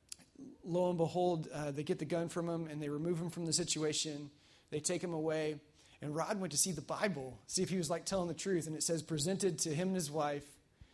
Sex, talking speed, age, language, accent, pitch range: male, 245 wpm, 30-49, English, American, 150-225 Hz